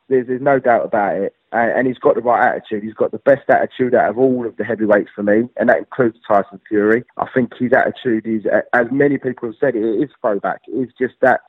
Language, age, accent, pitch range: English, 20-39, British, 115-145 Hz